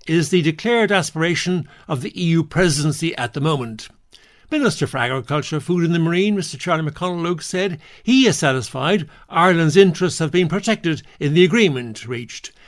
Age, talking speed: 60-79, 160 wpm